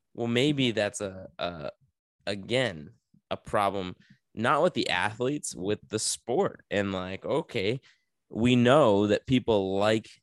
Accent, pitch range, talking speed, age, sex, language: American, 100-115 Hz, 135 wpm, 20-39, male, English